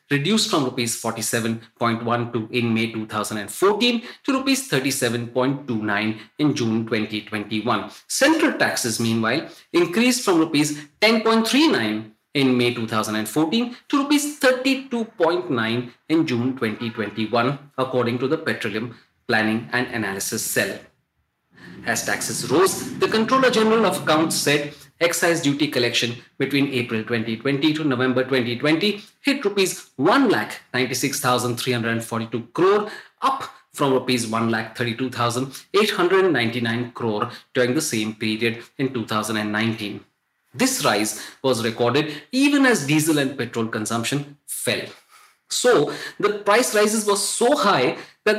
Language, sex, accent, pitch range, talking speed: English, male, Indian, 115-185 Hz, 105 wpm